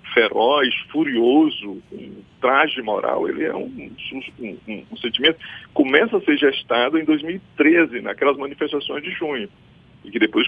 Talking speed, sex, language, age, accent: 150 wpm, male, Portuguese, 50-69, Brazilian